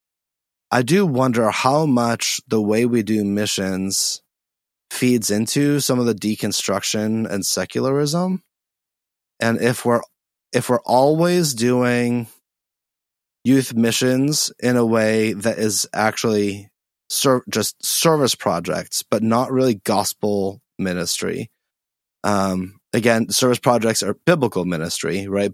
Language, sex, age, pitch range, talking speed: English, male, 20-39, 100-125 Hz, 115 wpm